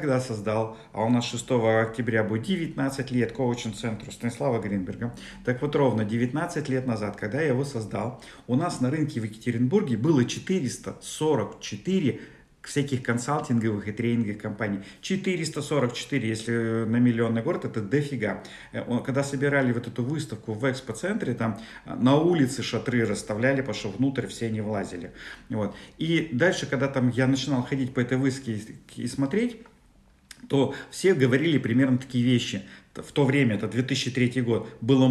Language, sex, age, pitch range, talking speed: Russian, male, 40-59, 110-135 Hz, 145 wpm